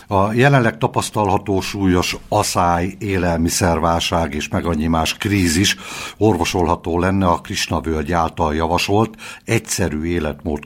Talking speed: 105 wpm